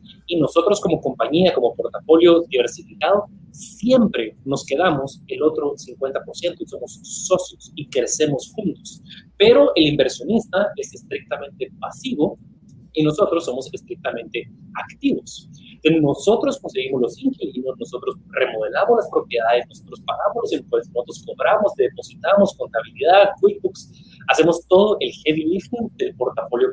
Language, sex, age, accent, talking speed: Spanish, male, 30-49, Mexican, 125 wpm